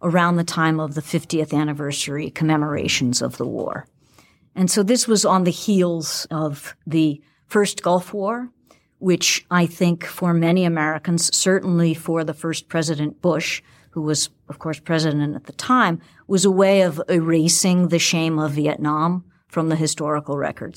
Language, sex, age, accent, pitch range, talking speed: English, female, 50-69, American, 155-180 Hz, 160 wpm